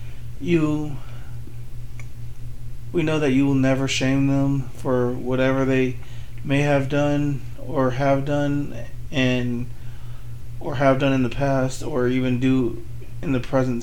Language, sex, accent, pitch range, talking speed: English, male, American, 120-135 Hz, 135 wpm